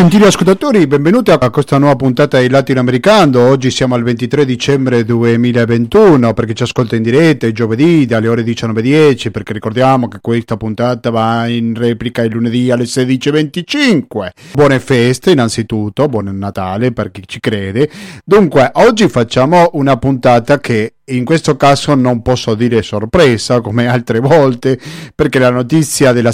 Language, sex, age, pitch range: Italian, male, 40-59, 115-150 Hz